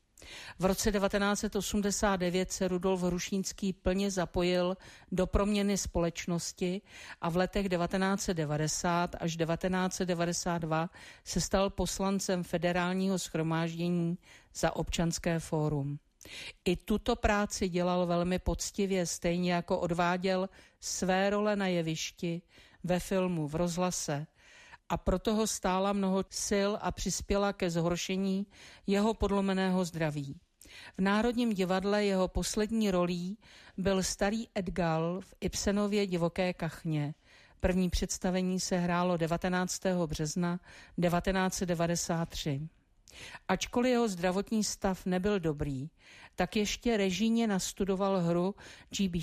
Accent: native